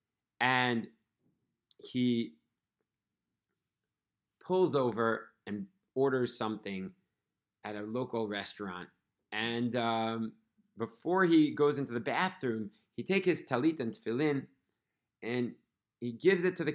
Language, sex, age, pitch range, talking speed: English, male, 30-49, 110-160 Hz, 110 wpm